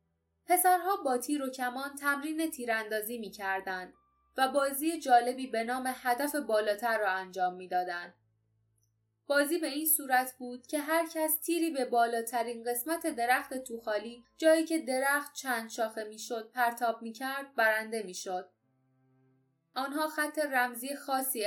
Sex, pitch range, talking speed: female, 215-280 Hz, 135 wpm